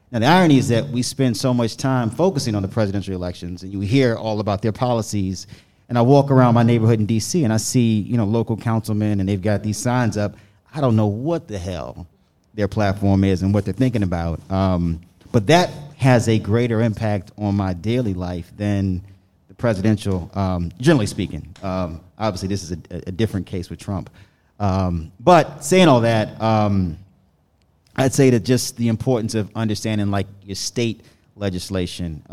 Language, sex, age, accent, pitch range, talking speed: English, male, 30-49, American, 95-110 Hz, 190 wpm